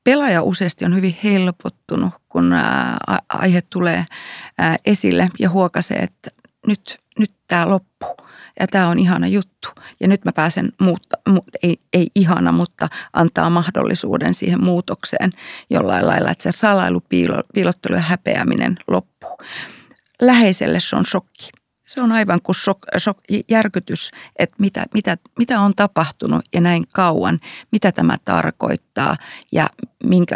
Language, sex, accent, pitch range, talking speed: Finnish, female, native, 170-205 Hz, 125 wpm